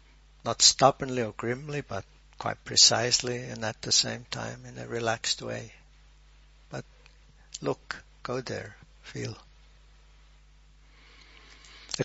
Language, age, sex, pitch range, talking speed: English, 60-79, male, 110-130 Hz, 110 wpm